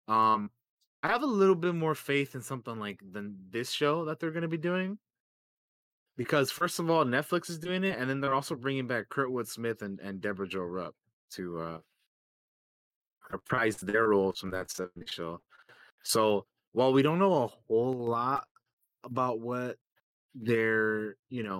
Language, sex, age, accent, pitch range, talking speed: English, male, 20-39, American, 100-125 Hz, 175 wpm